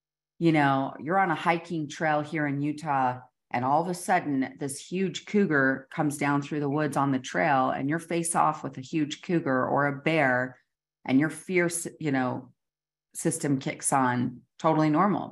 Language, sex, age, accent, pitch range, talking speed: English, female, 40-59, American, 140-175 Hz, 185 wpm